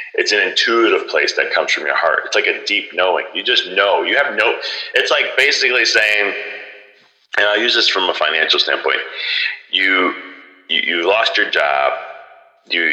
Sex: male